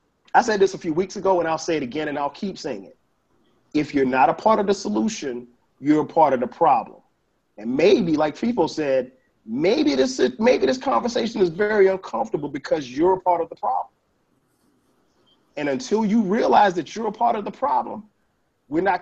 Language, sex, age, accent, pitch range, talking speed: English, male, 40-59, American, 150-200 Hz, 200 wpm